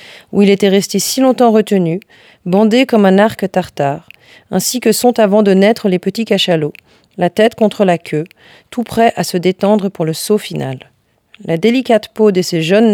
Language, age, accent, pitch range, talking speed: French, 40-59, French, 170-220 Hz, 190 wpm